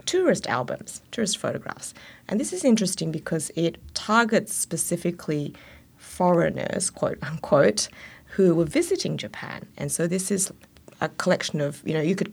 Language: English